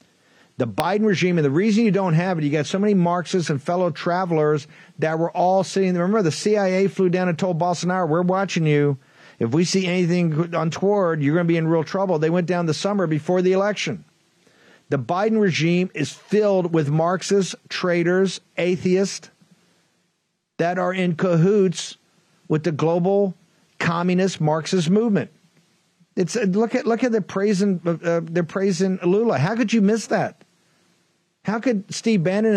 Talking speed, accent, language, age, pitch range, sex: 175 wpm, American, English, 50-69, 165-200 Hz, male